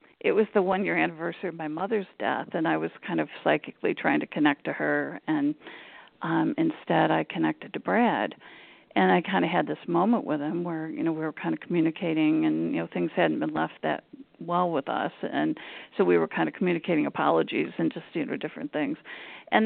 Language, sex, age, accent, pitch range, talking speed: English, female, 50-69, American, 160-220 Hz, 215 wpm